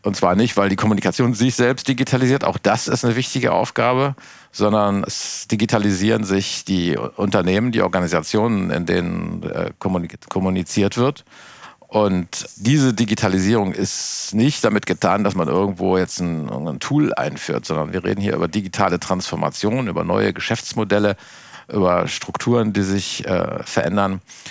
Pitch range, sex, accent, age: 95-115 Hz, male, German, 50-69